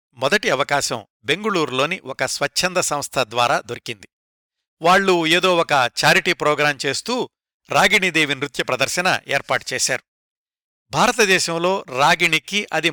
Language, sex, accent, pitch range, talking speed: Telugu, male, native, 135-175 Hz, 100 wpm